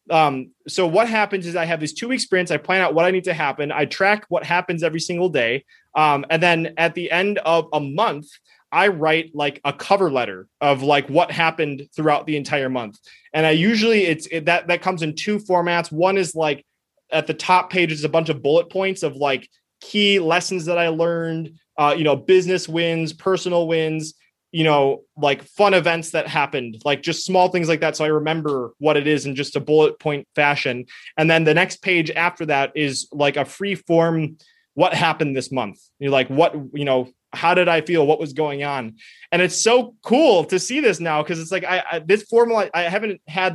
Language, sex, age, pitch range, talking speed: English, male, 20-39, 150-180 Hz, 220 wpm